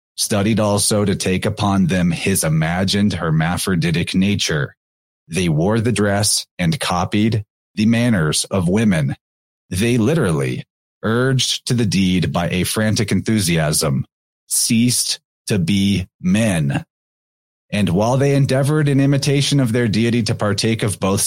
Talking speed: 135 wpm